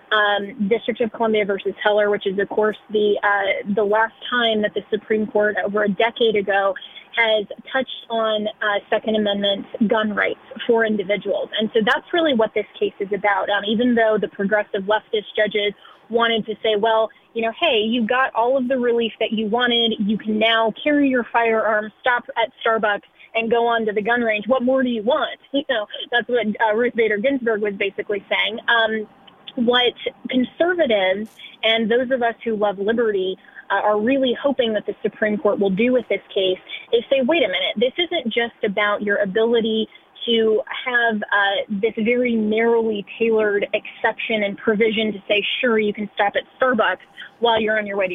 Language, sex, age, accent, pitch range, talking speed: English, female, 20-39, American, 210-240 Hz, 190 wpm